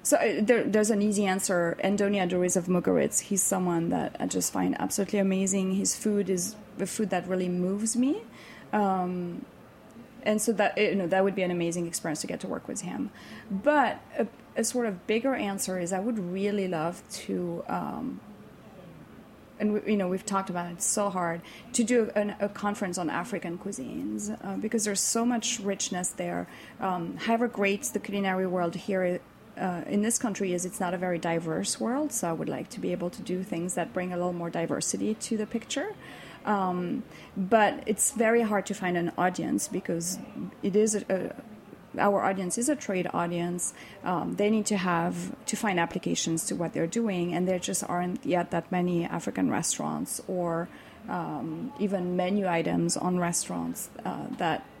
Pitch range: 180-210 Hz